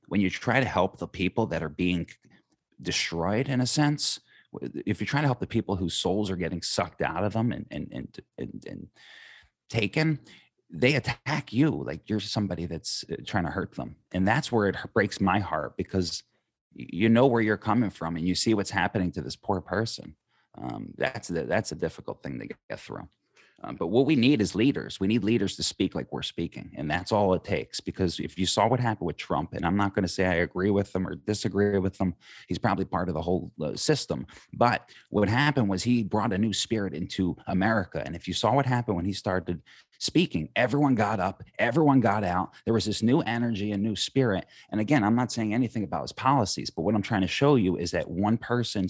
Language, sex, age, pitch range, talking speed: English, male, 30-49, 90-115 Hz, 225 wpm